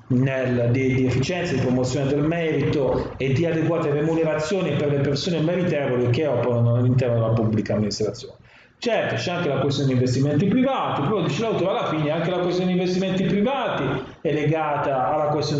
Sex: male